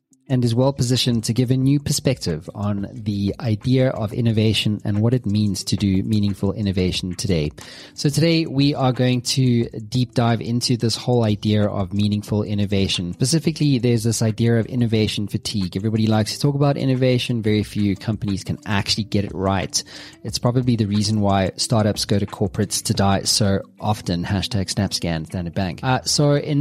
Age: 20-39